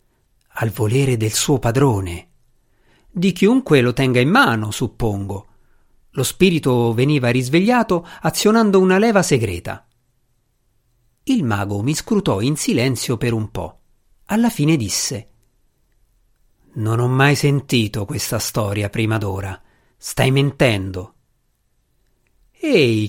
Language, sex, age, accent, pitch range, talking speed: Italian, male, 50-69, native, 115-145 Hz, 110 wpm